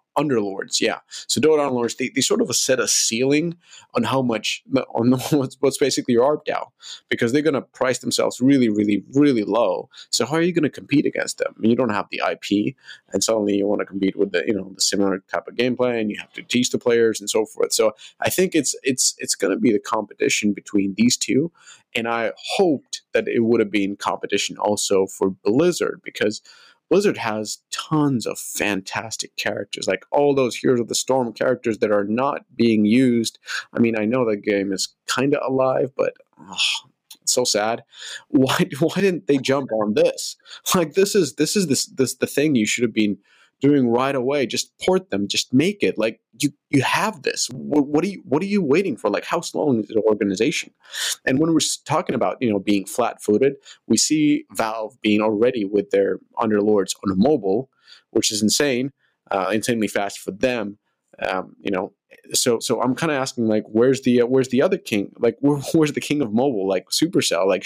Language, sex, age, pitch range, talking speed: English, male, 30-49, 105-145 Hz, 210 wpm